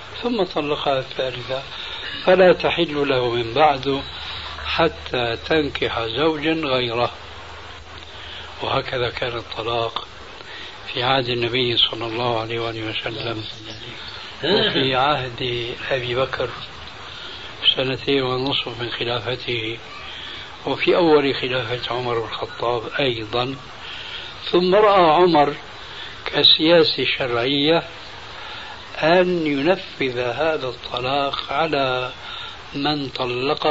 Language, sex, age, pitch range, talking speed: Arabic, male, 60-79, 120-150 Hz, 85 wpm